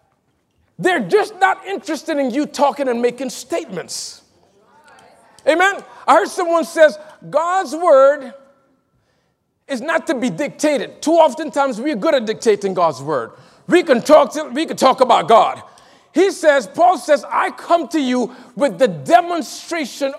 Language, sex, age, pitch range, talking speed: English, male, 50-69, 255-335 Hz, 150 wpm